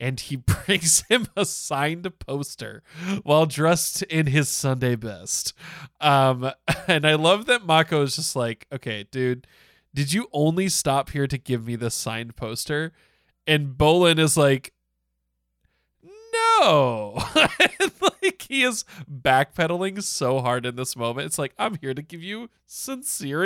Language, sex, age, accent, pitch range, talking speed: English, male, 20-39, American, 125-185 Hz, 145 wpm